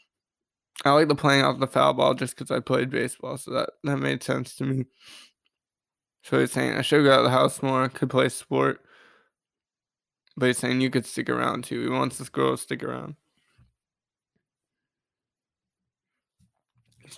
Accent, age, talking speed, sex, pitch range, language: American, 20-39, 175 wpm, male, 130-150 Hz, English